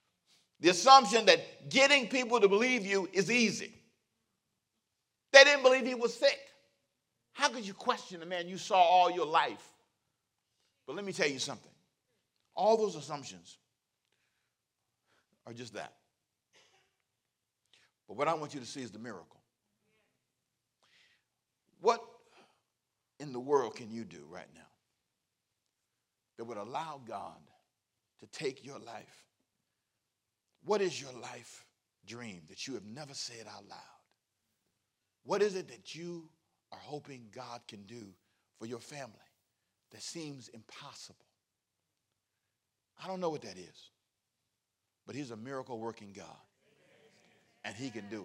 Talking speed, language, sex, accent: 135 wpm, English, male, American